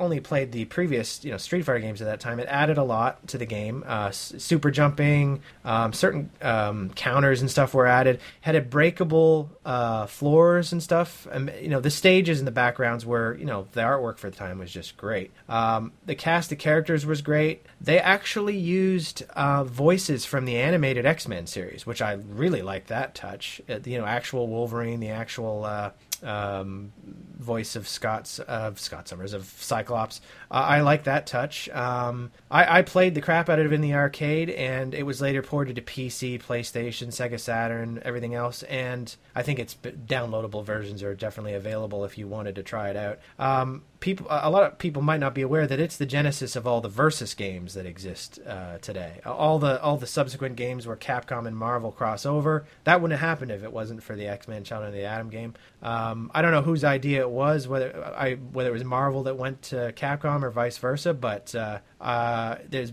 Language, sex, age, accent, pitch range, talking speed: English, male, 30-49, American, 115-150 Hz, 210 wpm